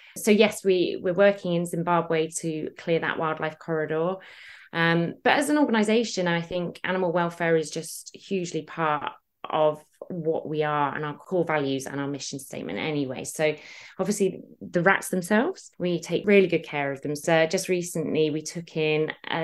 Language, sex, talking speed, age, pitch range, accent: English, female, 175 wpm, 20-39, 165-225 Hz, British